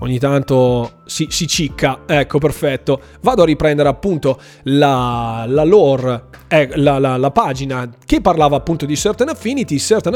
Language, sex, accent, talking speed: Italian, male, native, 155 wpm